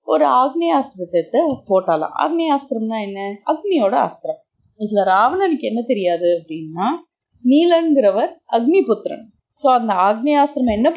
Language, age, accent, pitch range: Tamil, 30-49, native, 195-305 Hz